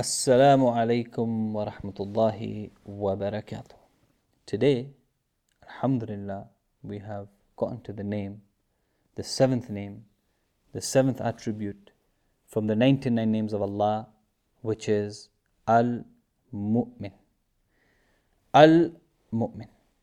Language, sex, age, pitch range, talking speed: English, male, 30-49, 105-130 Hz, 90 wpm